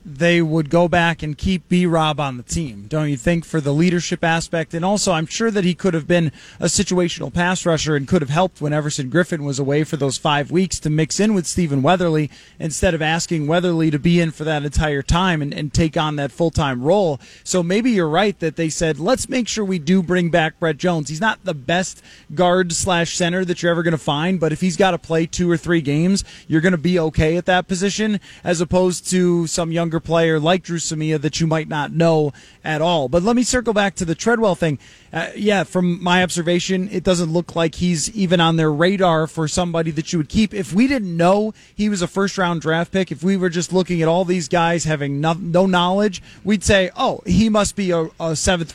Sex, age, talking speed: male, 20-39, 240 wpm